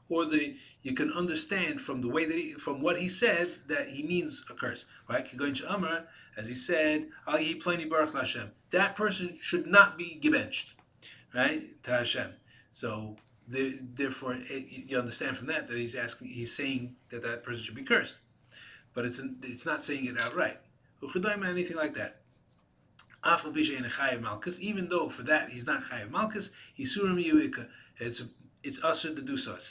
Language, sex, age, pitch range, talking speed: English, male, 30-49, 125-165 Hz, 180 wpm